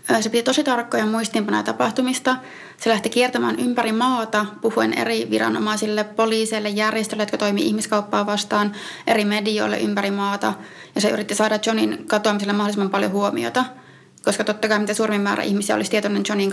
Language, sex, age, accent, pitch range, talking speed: Finnish, female, 30-49, native, 200-230 Hz, 155 wpm